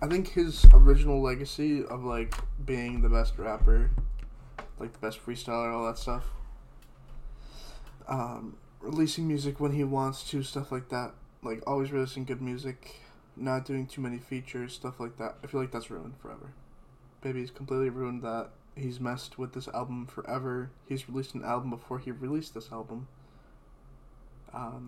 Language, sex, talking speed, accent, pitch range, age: English, male, 160 wpm, American, 120-135 Hz, 20-39